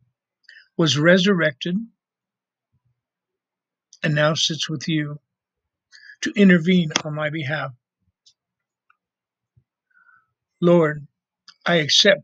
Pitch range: 125-155 Hz